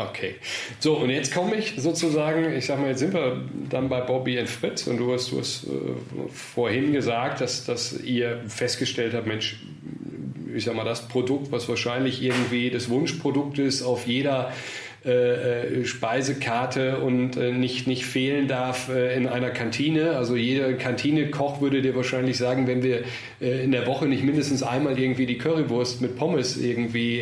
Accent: German